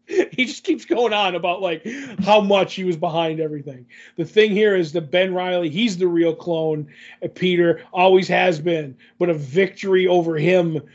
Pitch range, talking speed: 160-180 Hz, 185 wpm